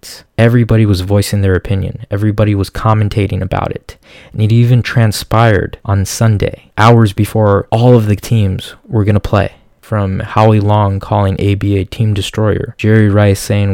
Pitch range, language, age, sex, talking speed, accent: 100-115 Hz, English, 20-39, male, 160 wpm, American